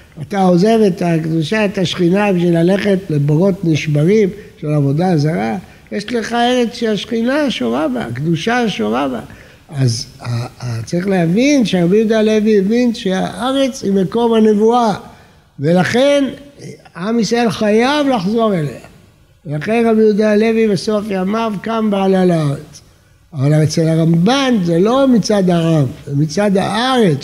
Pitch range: 165-225 Hz